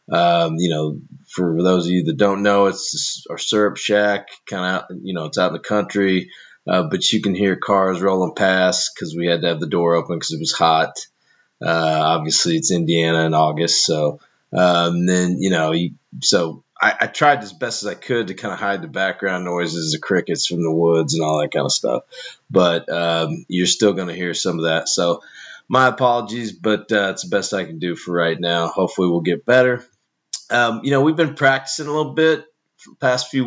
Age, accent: 30-49, American